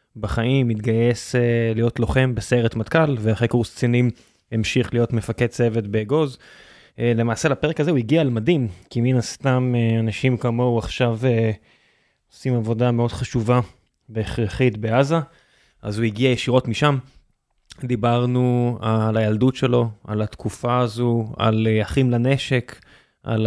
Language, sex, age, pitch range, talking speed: Hebrew, male, 20-39, 115-130 Hz, 125 wpm